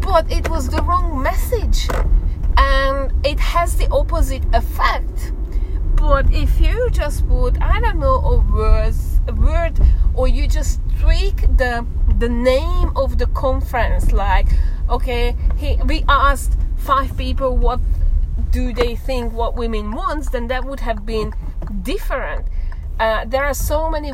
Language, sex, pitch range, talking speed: English, female, 75-110 Hz, 145 wpm